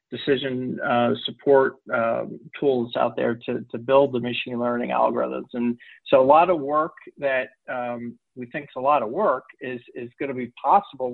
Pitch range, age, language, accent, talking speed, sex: 120-135 Hz, 40-59, English, American, 190 wpm, male